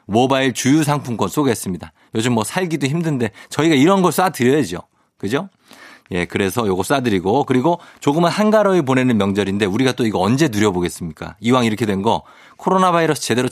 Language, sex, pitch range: Korean, male, 105-160 Hz